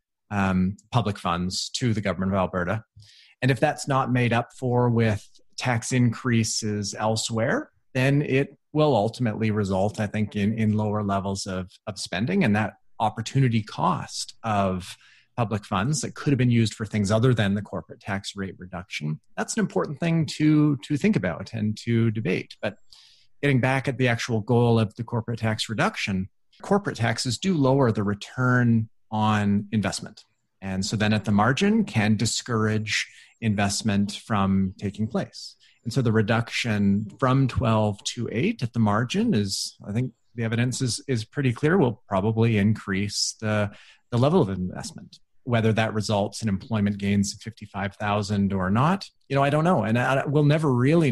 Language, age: English, 30-49